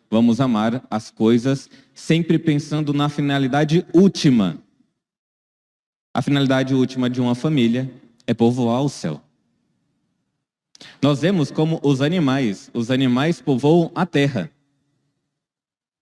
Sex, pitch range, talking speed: male, 110-145 Hz, 110 wpm